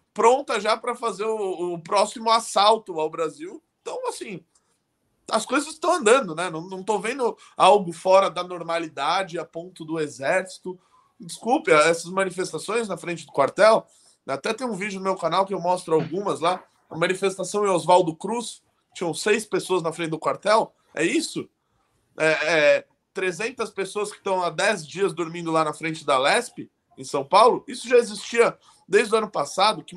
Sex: male